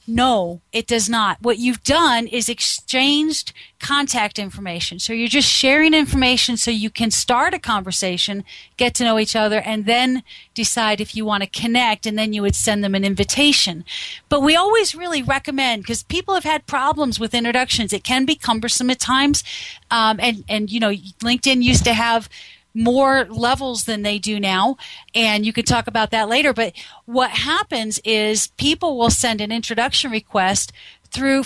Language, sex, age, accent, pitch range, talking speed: English, female, 40-59, American, 220-270 Hz, 185 wpm